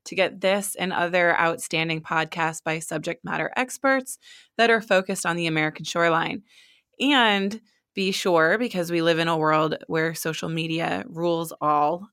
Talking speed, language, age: 160 wpm, English, 20-39